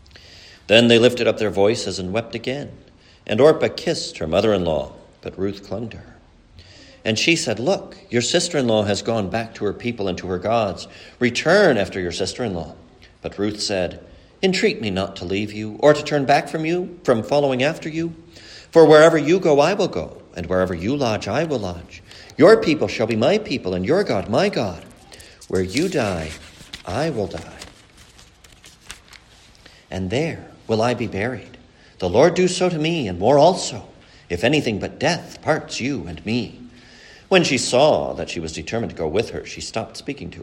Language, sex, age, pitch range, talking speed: English, male, 50-69, 95-145 Hz, 190 wpm